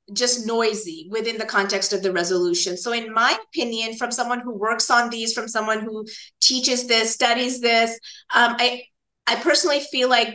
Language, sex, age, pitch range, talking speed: English, female, 30-49, 210-250 Hz, 180 wpm